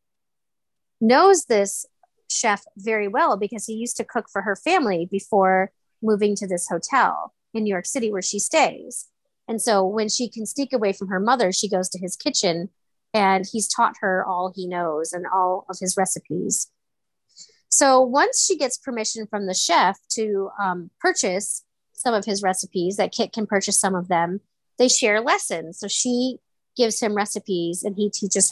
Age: 30-49